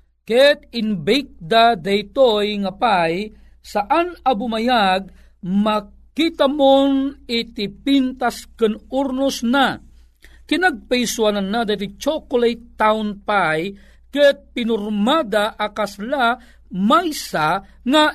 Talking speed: 85 wpm